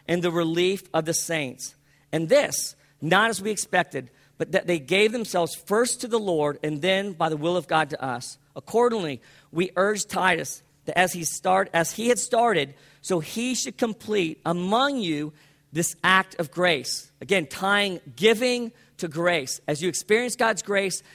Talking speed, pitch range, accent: 175 wpm, 150-200 Hz, American